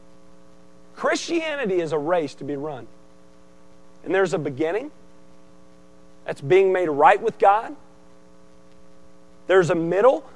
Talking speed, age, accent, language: 115 wpm, 40-59, American, English